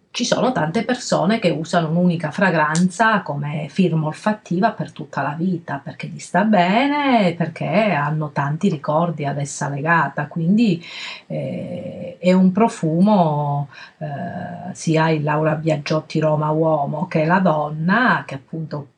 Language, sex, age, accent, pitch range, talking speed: Italian, female, 40-59, native, 160-185 Hz, 135 wpm